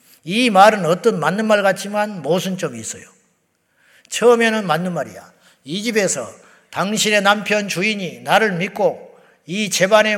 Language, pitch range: Korean, 175-240 Hz